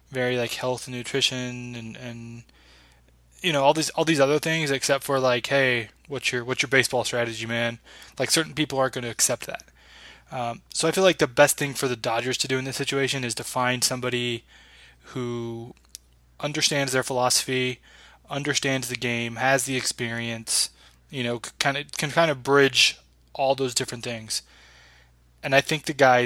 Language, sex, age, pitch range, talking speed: English, male, 20-39, 120-135 Hz, 185 wpm